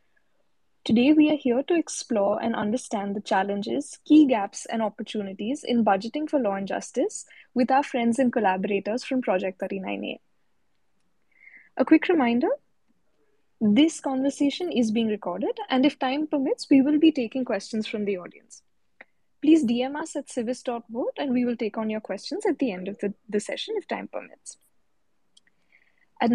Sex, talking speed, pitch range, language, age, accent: female, 160 wpm, 215-280 Hz, English, 20-39, Indian